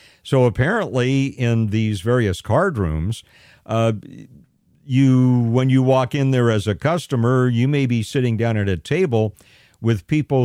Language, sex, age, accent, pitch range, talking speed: English, male, 50-69, American, 90-125 Hz, 155 wpm